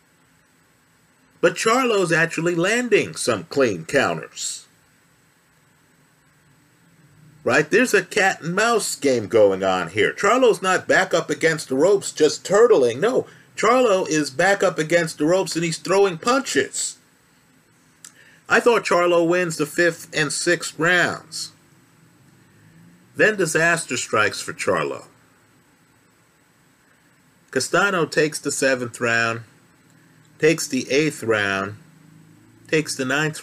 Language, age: English, 50-69